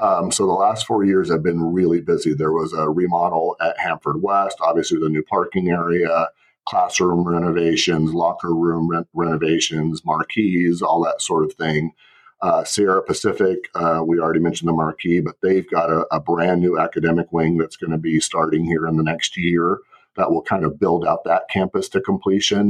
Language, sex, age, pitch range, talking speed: English, male, 40-59, 80-95 Hz, 190 wpm